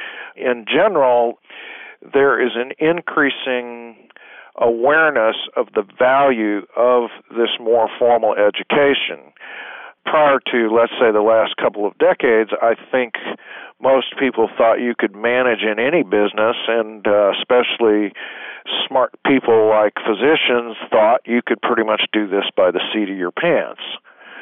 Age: 50-69